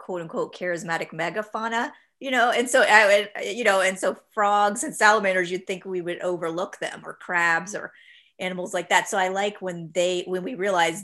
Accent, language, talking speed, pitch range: American, English, 200 wpm, 170-215 Hz